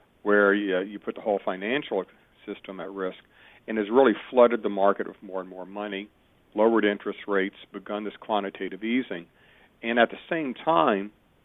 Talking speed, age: 175 wpm, 50-69